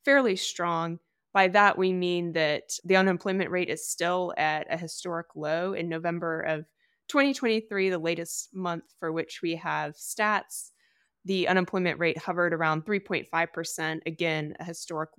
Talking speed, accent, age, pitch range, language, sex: 145 wpm, American, 20-39, 155-180 Hz, English, female